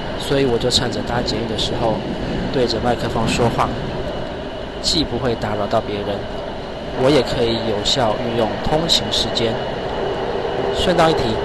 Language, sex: Chinese, male